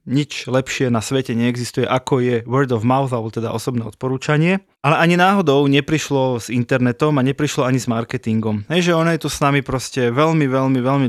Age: 20-39